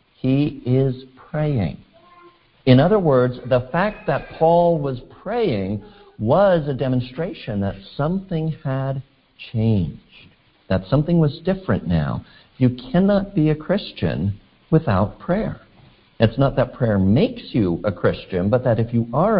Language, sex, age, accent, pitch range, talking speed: English, male, 60-79, American, 105-150 Hz, 135 wpm